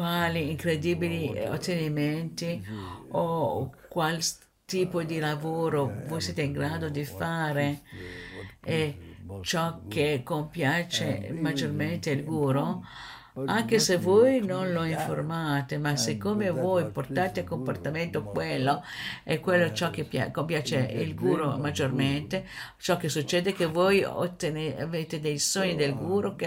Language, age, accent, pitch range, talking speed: Italian, 50-69, native, 145-185 Hz, 120 wpm